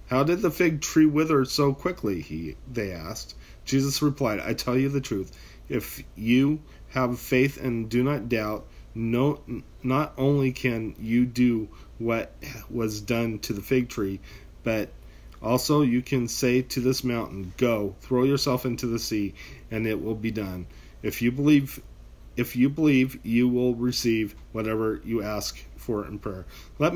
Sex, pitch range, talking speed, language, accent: male, 105-130 Hz, 165 wpm, English, American